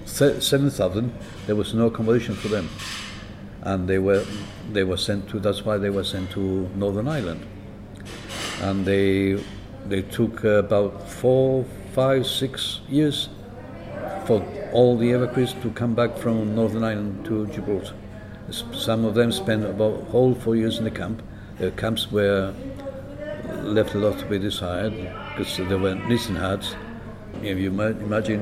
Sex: male